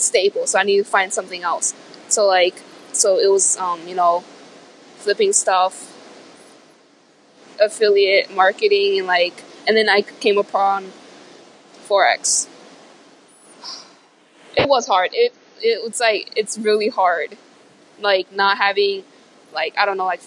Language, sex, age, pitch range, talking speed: English, female, 20-39, 190-240 Hz, 135 wpm